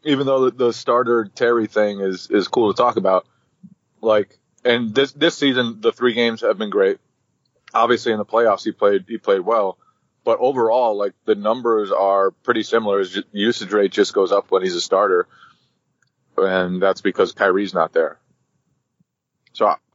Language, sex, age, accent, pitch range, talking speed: English, male, 30-49, American, 105-135 Hz, 170 wpm